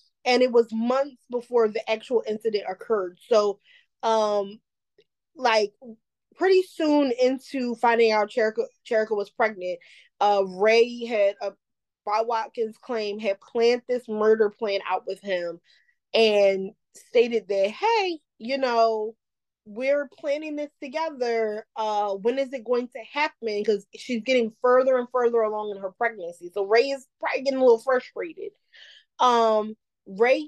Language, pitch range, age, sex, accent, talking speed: English, 210-255 Hz, 20-39, female, American, 145 wpm